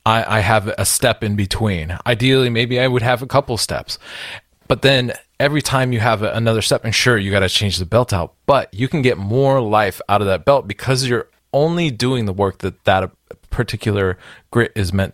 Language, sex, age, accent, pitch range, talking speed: English, male, 30-49, American, 95-115 Hz, 210 wpm